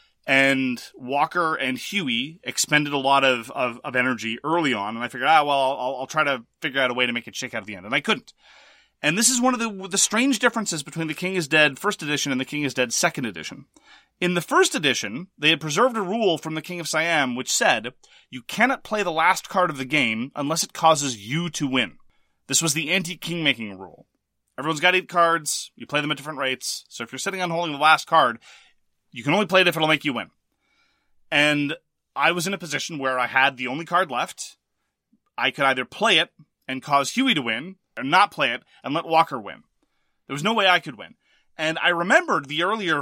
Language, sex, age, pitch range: English, male, 30-49, 135-180 Hz